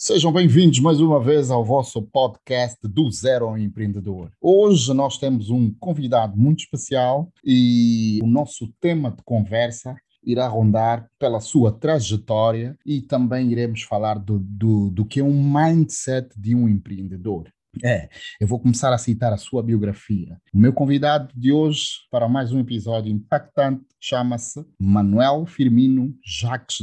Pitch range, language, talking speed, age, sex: 110-140 Hz, Portuguese, 145 wpm, 30-49, male